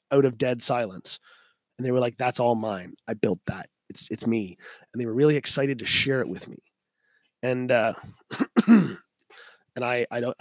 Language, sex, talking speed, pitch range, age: English, male, 190 wpm, 120-145 Hz, 20-39